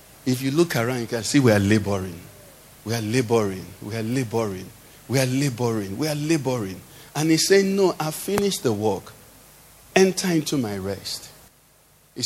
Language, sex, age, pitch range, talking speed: English, male, 50-69, 115-170 Hz, 170 wpm